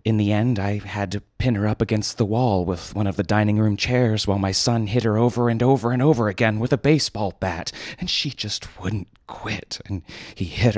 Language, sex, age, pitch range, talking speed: English, male, 30-49, 100-125 Hz, 235 wpm